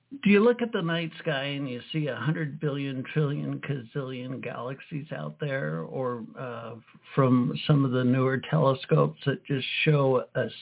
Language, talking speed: English, 170 wpm